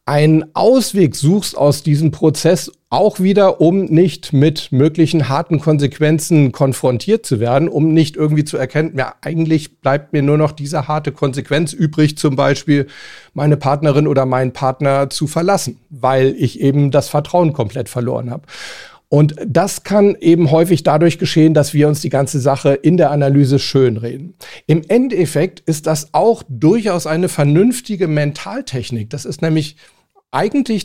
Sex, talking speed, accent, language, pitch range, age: male, 155 wpm, German, German, 140-175 Hz, 40-59